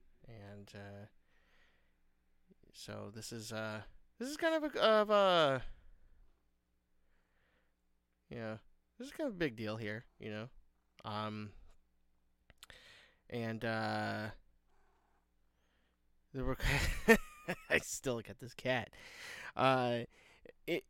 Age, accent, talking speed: 20-39, American, 115 wpm